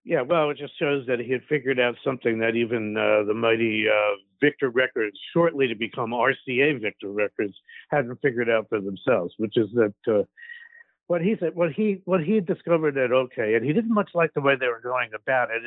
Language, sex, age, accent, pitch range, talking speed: English, male, 60-79, American, 130-185 Hz, 220 wpm